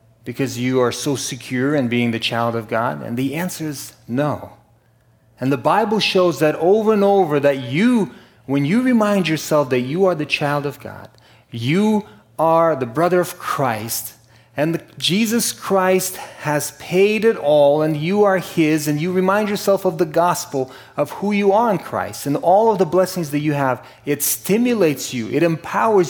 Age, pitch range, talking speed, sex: 30-49, 120-175 Hz, 190 wpm, male